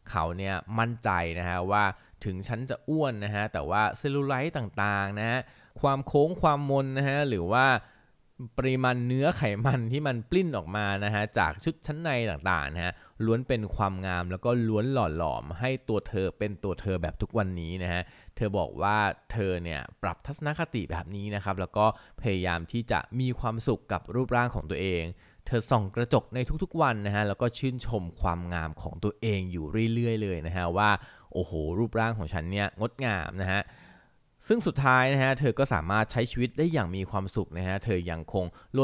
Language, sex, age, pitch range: Thai, male, 20-39, 90-125 Hz